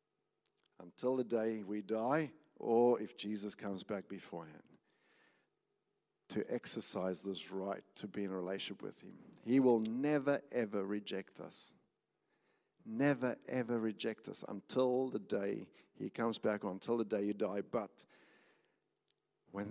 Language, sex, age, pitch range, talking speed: English, male, 50-69, 105-135 Hz, 140 wpm